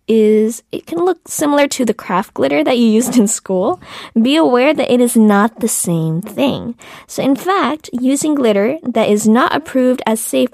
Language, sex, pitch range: Korean, female, 180-235 Hz